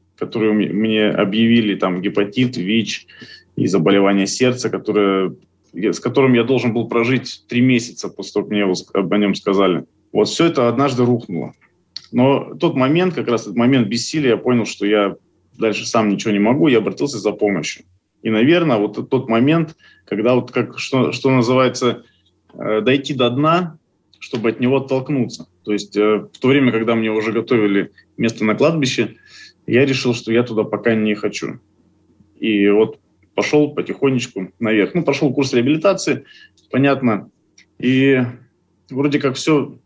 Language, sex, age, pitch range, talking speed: Russian, male, 20-39, 105-130 Hz, 155 wpm